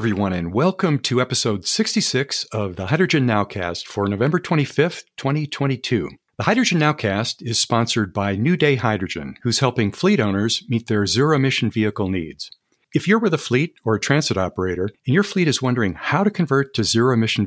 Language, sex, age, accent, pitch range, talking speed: English, male, 50-69, American, 100-145 Hz, 180 wpm